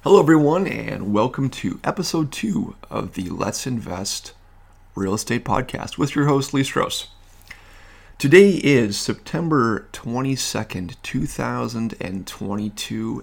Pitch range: 95-130 Hz